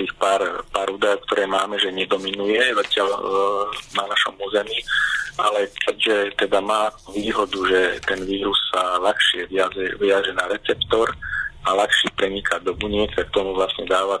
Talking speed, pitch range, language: 145 wpm, 95-130 Hz, Slovak